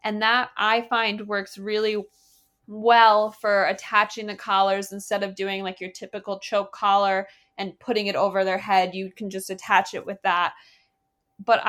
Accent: American